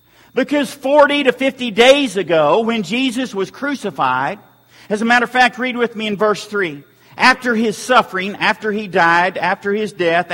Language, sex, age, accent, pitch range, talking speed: English, male, 50-69, American, 205-260 Hz, 175 wpm